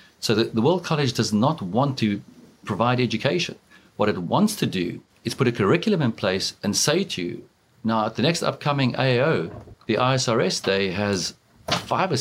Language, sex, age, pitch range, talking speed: English, male, 50-69, 110-130 Hz, 185 wpm